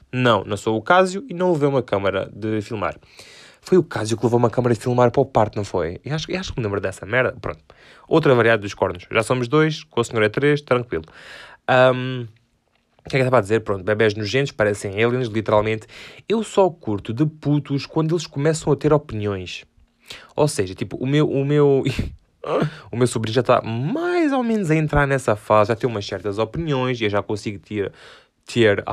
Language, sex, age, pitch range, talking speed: Portuguese, male, 20-39, 105-140 Hz, 215 wpm